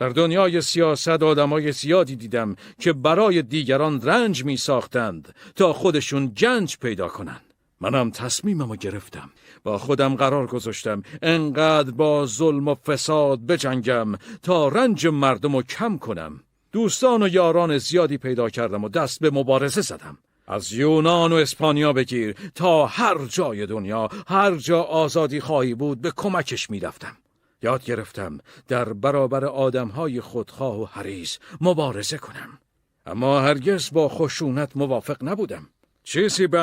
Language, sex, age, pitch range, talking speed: Persian, male, 50-69, 120-165 Hz, 135 wpm